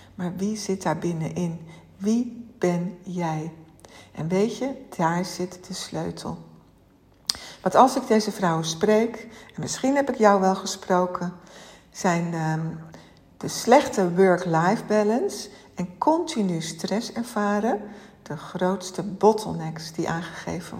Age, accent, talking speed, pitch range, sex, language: 60-79, Dutch, 120 wpm, 165-215 Hz, female, Dutch